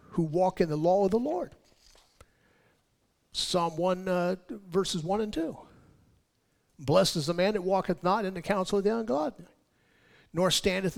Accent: American